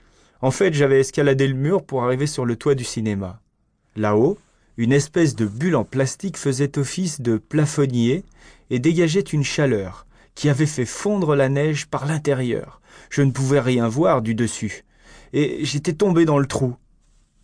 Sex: male